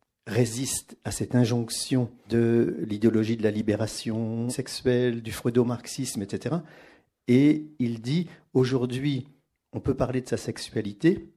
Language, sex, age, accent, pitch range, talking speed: French, male, 50-69, French, 110-140 Hz, 130 wpm